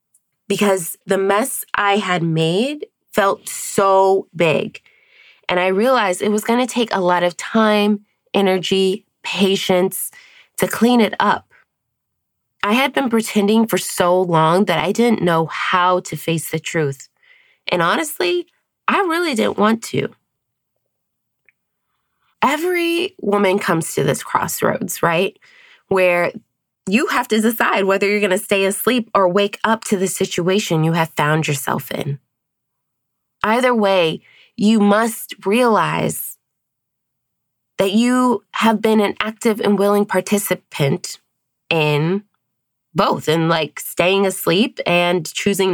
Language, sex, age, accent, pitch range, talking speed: English, female, 20-39, American, 170-225 Hz, 130 wpm